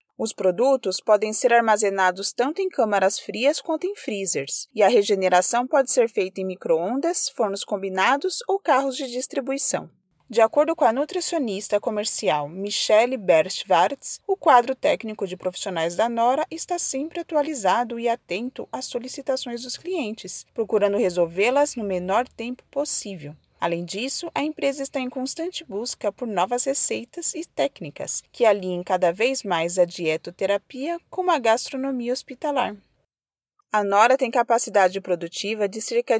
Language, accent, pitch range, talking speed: Portuguese, Brazilian, 200-280 Hz, 145 wpm